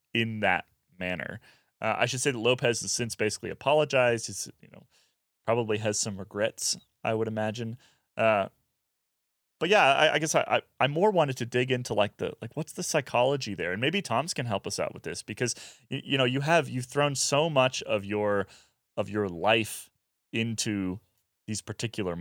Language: English